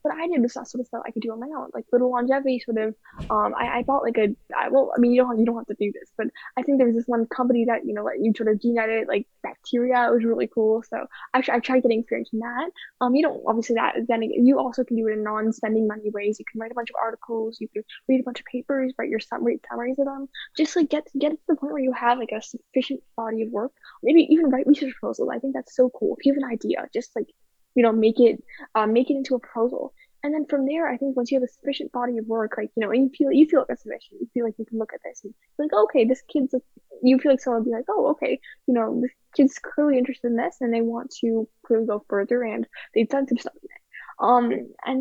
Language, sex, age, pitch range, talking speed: English, female, 10-29, 230-280 Hz, 285 wpm